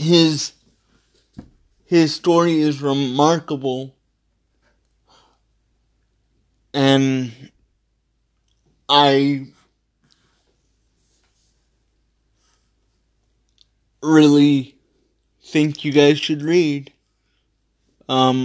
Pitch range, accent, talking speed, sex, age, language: 130-150 Hz, American, 45 wpm, male, 30-49, English